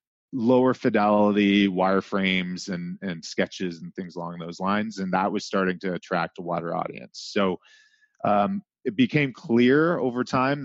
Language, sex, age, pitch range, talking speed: English, male, 30-49, 95-115 Hz, 150 wpm